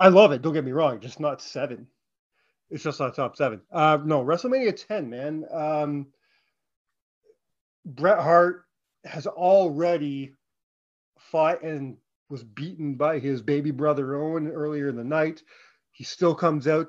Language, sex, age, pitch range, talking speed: English, male, 30-49, 135-160 Hz, 150 wpm